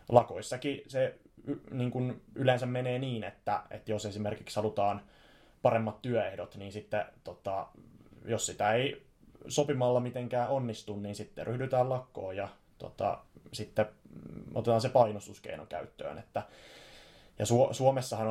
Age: 20-39